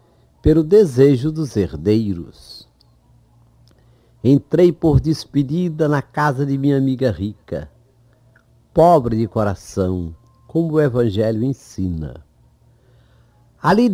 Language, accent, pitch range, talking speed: Portuguese, Brazilian, 110-170 Hz, 90 wpm